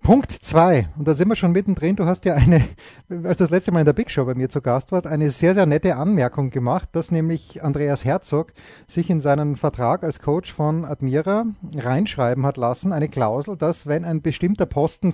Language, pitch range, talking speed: German, 140-180 Hz, 210 wpm